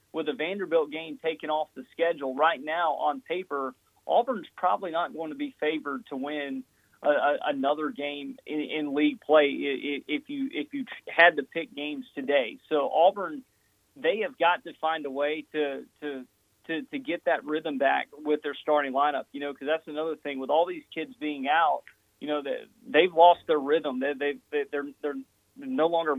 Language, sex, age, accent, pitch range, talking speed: English, male, 30-49, American, 140-170 Hz, 190 wpm